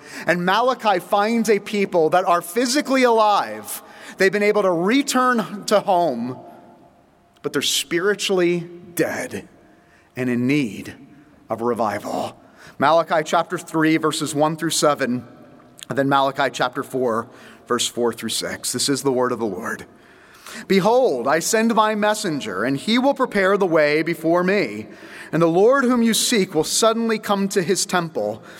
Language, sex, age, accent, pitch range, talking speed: English, male, 30-49, American, 150-205 Hz, 155 wpm